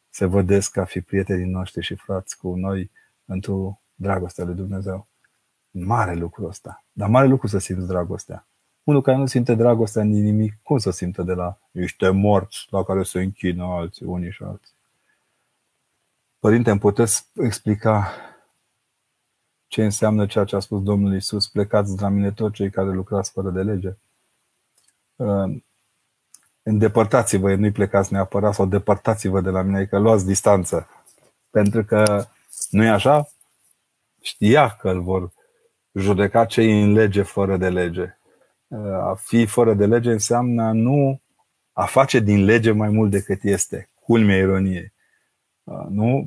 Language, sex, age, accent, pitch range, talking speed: Romanian, male, 30-49, native, 95-110 Hz, 145 wpm